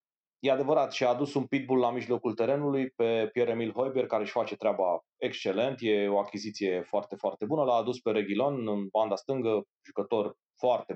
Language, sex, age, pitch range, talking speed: Romanian, male, 30-49, 110-135 Hz, 175 wpm